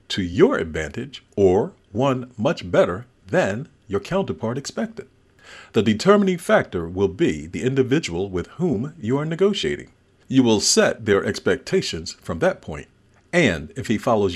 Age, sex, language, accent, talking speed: 50-69, male, English, American, 145 wpm